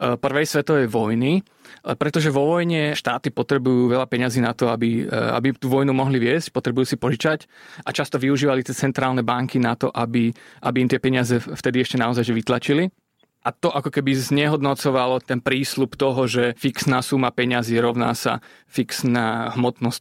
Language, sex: Slovak, male